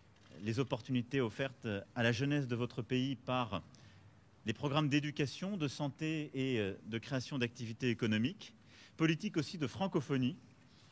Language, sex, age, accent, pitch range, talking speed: French, male, 40-59, French, 110-140 Hz, 130 wpm